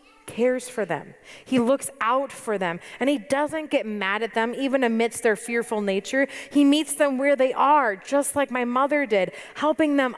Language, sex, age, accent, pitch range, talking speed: English, female, 30-49, American, 205-265 Hz, 195 wpm